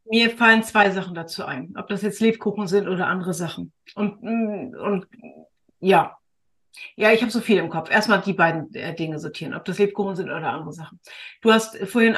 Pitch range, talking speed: 180-215 Hz, 195 wpm